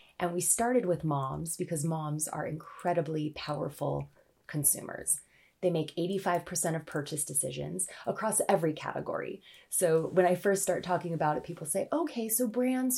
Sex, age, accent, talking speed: female, 20-39, American, 155 wpm